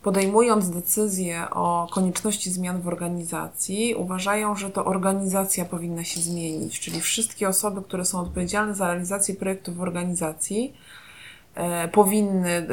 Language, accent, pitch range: Polish, native, 175-210 Hz